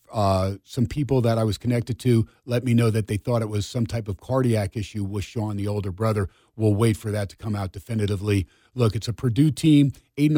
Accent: American